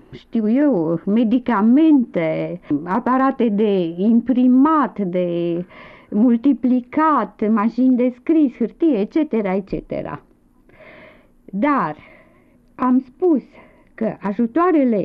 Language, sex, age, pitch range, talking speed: Romanian, female, 50-69, 215-305 Hz, 75 wpm